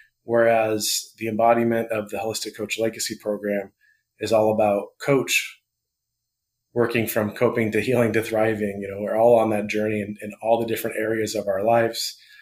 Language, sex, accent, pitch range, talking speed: English, male, American, 105-120 Hz, 175 wpm